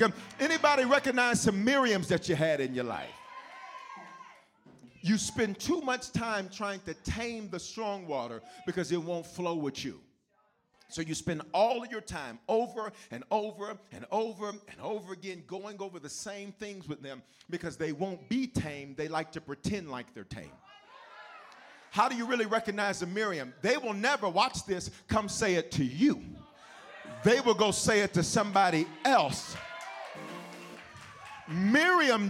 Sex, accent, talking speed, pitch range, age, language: male, American, 160 wpm, 185-250 Hz, 40-59, English